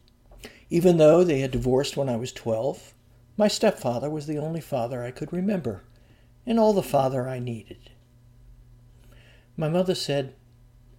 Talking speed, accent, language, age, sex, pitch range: 145 wpm, American, English, 60-79, male, 120-145 Hz